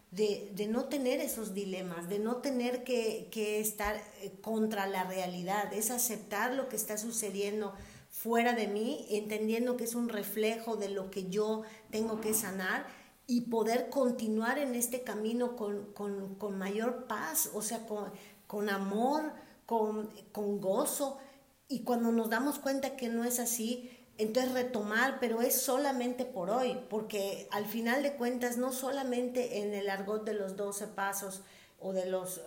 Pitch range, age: 205-245 Hz, 50-69